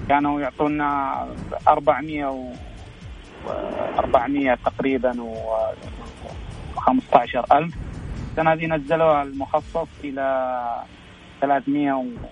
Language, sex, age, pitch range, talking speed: Arabic, male, 30-49, 135-160 Hz, 70 wpm